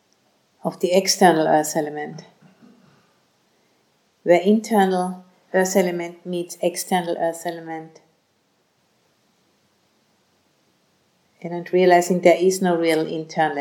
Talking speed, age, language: 95 wpm, 50-69, English